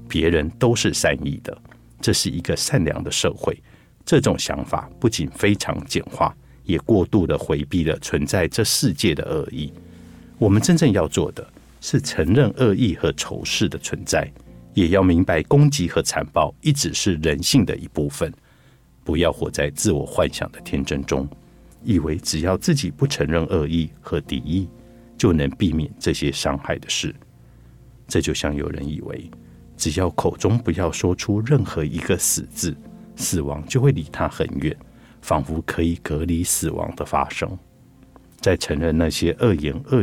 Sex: male